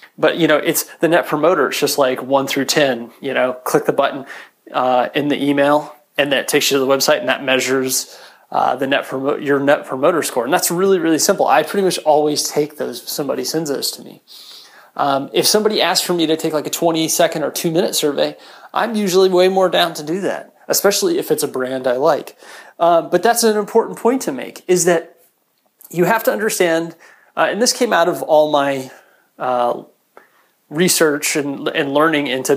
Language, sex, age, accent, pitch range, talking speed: English, male, 30-49, American, 135-185 Hz, 210 wpm